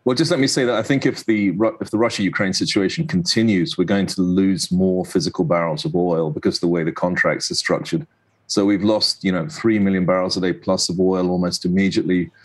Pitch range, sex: 90-105 Hz, male